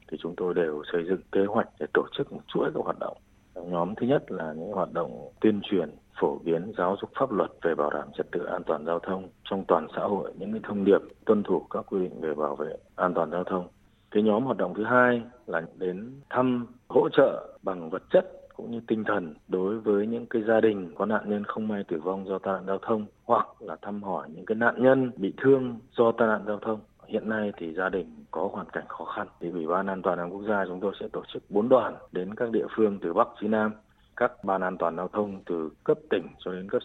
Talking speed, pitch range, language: 250 wpm, 95-115 Hz, Vietnamese